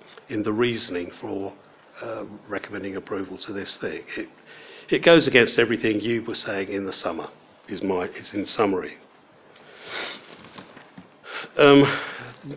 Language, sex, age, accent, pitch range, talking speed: English, male, 50-69, British, 100-145 Hz, 130 wpm